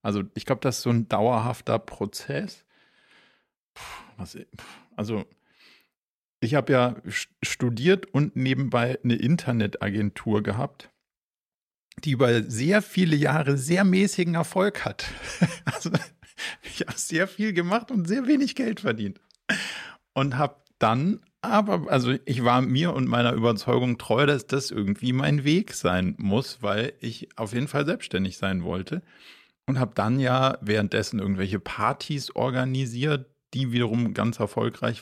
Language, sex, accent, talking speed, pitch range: German, male, German, 135 wpm, 110-145 Hz